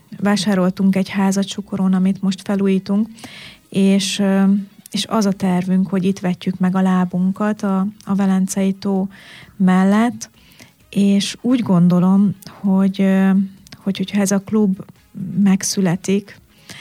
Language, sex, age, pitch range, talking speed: Hungarian, female, 30-49, 190-205 Hz, 115 wpm